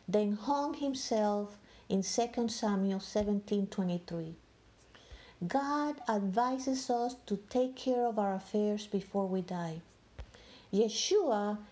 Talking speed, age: 115 wpm, 50-69